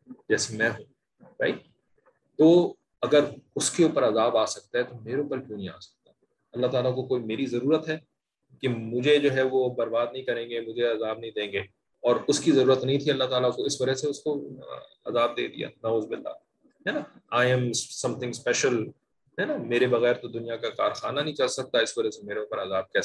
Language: English